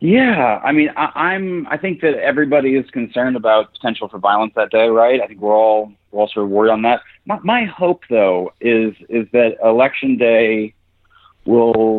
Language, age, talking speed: English, 30-49, 200 wpm